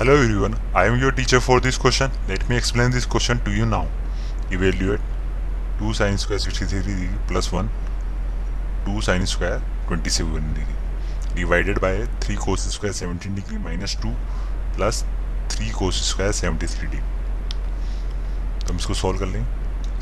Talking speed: 165 wpm